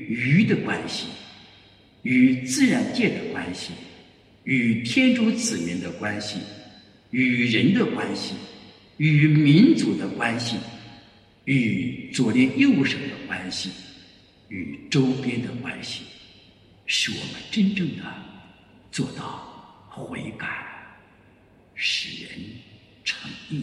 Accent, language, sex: Chinese, English, male